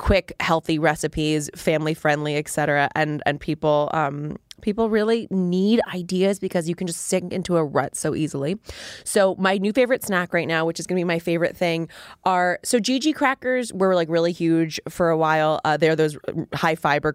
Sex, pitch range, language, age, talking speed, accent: female, 150-180 Hz, English, 20-39, 190 wpm, American